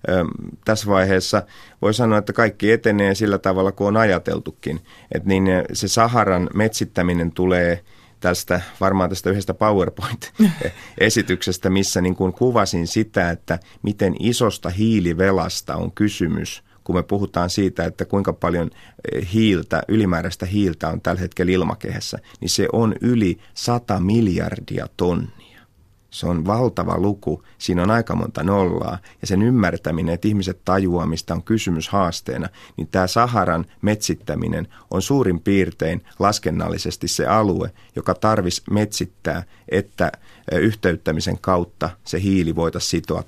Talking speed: 130 wpm